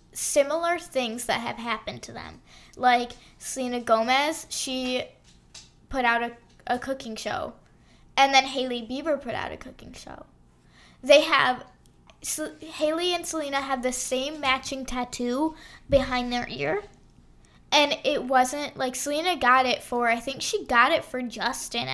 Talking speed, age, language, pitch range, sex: 150 wpm, 10-29, English, 235-275 Hz, female